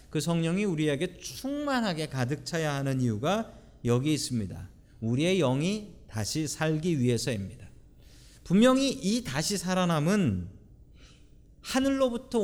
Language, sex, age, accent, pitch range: Korean, male, 40-59, native, 120-190 Hz